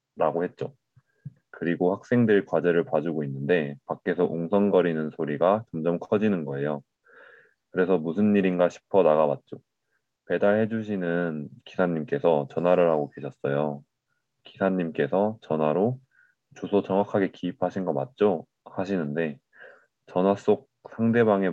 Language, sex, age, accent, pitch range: Korean, male, 20-39, native, 80-105 Hz